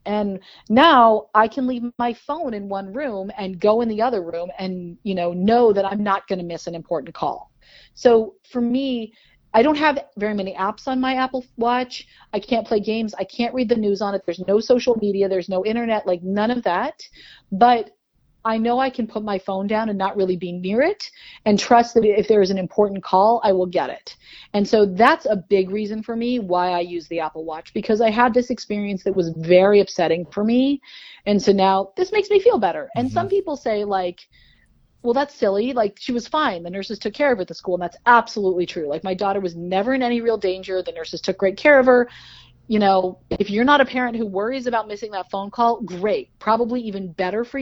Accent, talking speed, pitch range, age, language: American, 235 wpm, 190-245 Hz, 40-59, English